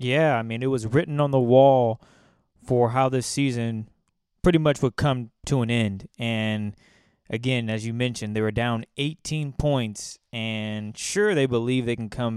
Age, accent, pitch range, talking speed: 20-39, American, 115-140 Hz, 180 wpm